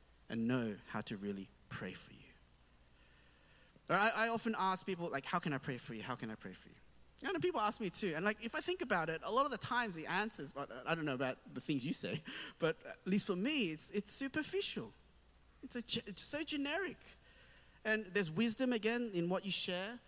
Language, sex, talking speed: English, male, 225 wpm